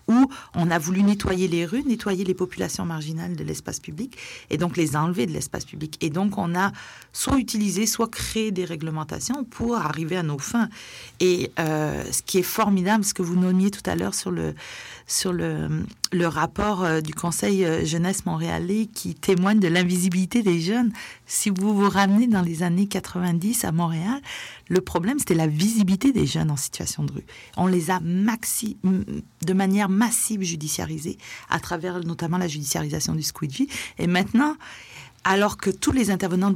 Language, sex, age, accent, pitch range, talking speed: French, female, 40-59, French, 175-220 Hz, 175 wpm